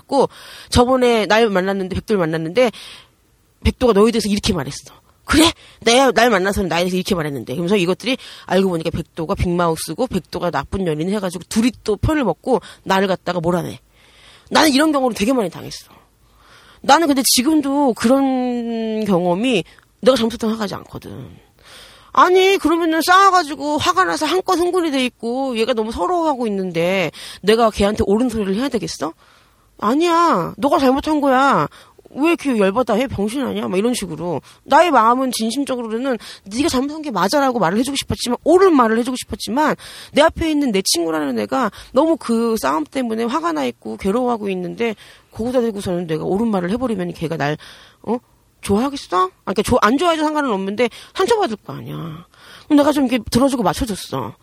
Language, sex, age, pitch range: Korean, female, 30-49, 185-270 Hz